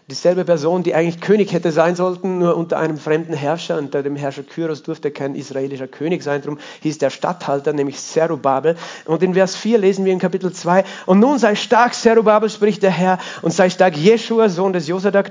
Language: German